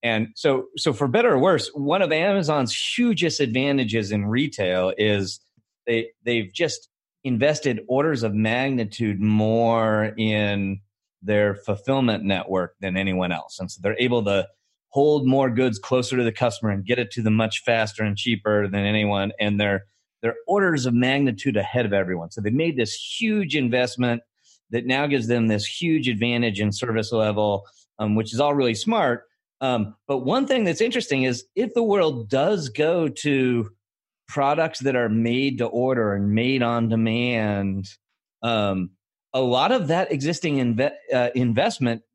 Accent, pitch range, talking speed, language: American, 105-135 Hz, 165 wpm, English